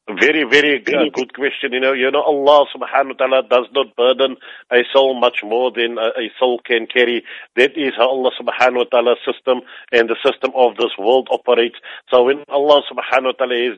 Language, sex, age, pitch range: English, male, 50-69, 120-130 Hz